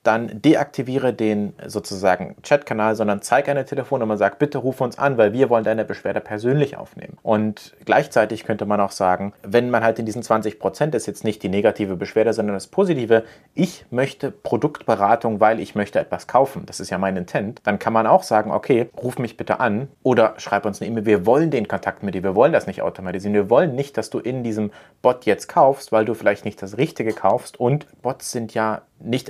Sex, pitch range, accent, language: male, 105-135 Hz, German, German